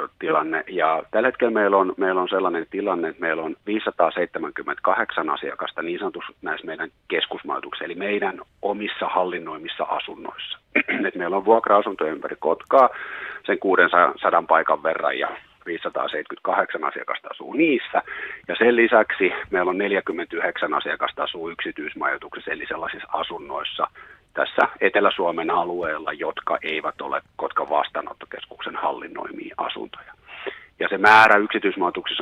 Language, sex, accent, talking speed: Finnish, male, native, 115 wpm